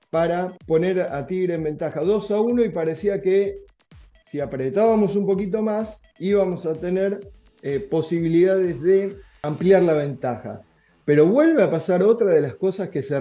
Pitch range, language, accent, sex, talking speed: 140-195 Hz, Spanish, Argentinian, male, 165 wpm